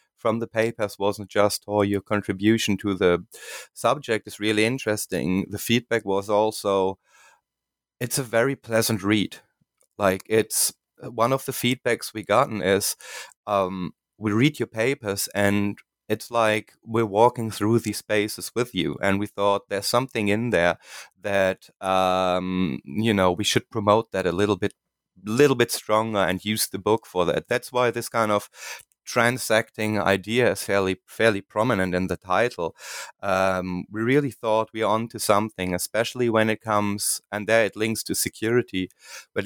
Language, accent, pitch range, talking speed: English, German, 100-115 Hz, 165 wpm